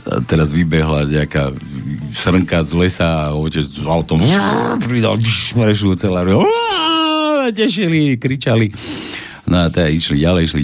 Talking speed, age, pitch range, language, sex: 140 wpm, 60-79, 85-125 Hz, Slovak, male